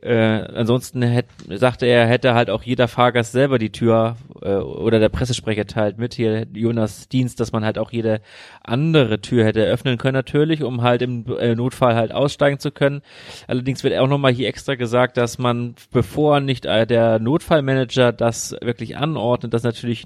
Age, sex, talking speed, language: 30-49, male, 175 wpm, German